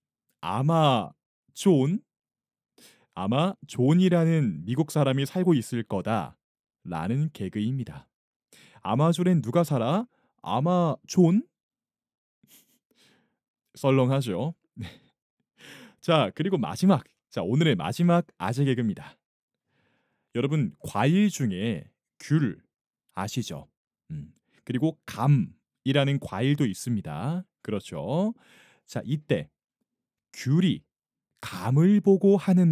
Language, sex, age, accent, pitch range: Korean, male, 30-49, native, 115-170 Hz